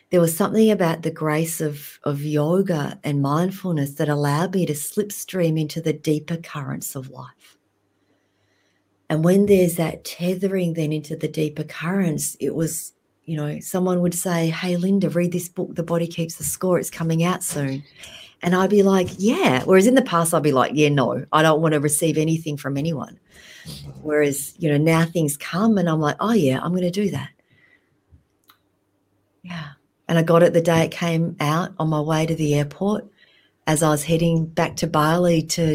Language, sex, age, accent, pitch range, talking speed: English, female, 40-59, Australian, 150-175 Hz, 195 wpm